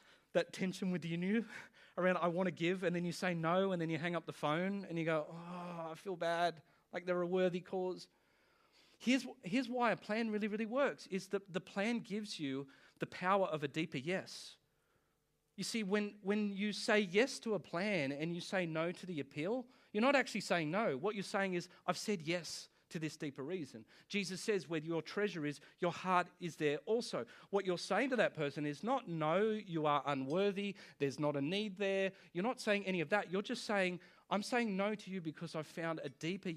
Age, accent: 30-49, Australian